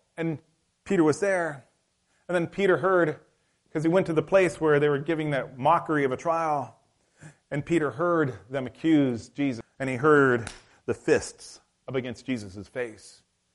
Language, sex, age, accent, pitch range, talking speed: English, male, 30-49, American, 100-135 Hz, 170 wpm